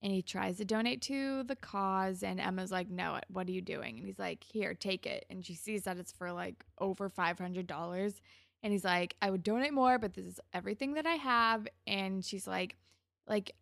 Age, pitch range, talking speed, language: 20-39, 180-220 Hz, 215 wpm, English